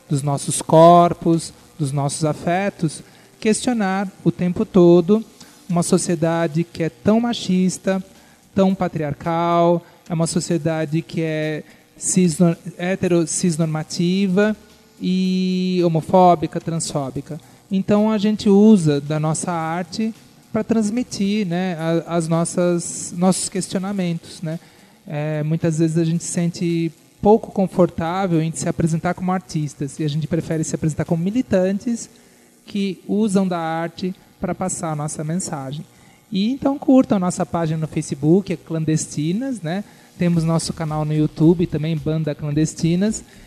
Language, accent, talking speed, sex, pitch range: Portuguese, Brazilian, 125 wpm, male, 160-190 Hz